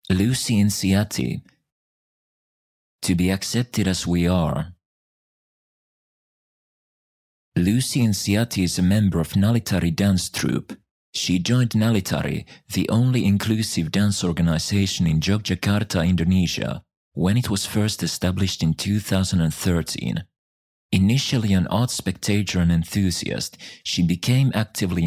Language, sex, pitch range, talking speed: English, male, 85-105 Hz, 105 wpm